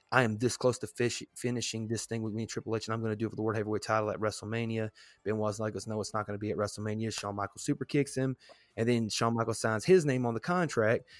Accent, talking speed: American, 290 wpm